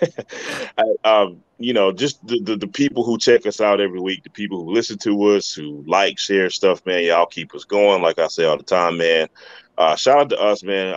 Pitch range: 95-150 Hz